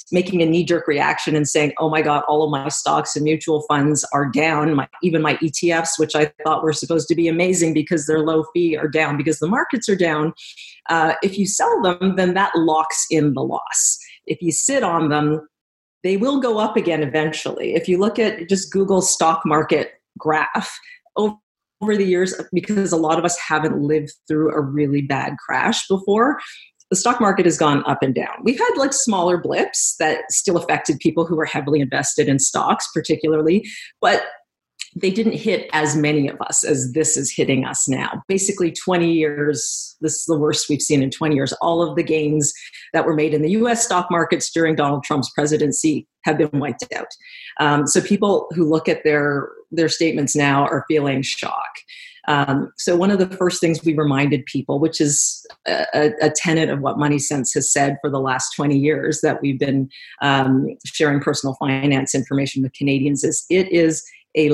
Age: 40-59